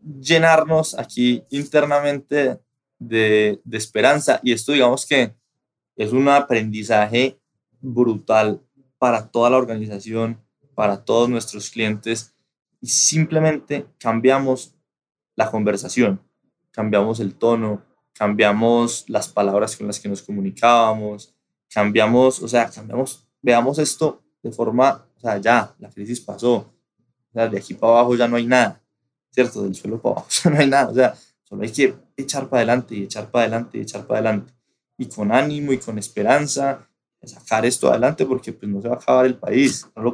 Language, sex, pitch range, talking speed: Spanish, male, 110-130 Hz, 160 wpm